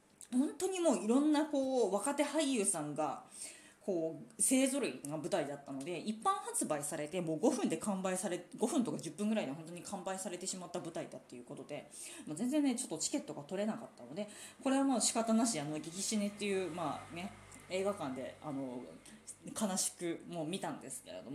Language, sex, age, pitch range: Japanese, female, 20-39, 165-270 Hz